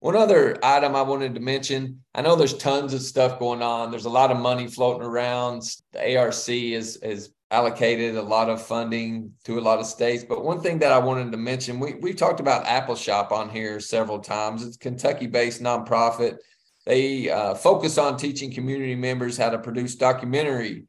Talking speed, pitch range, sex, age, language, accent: 200 wpm, 115-135 Hz, male, 40-59, English, American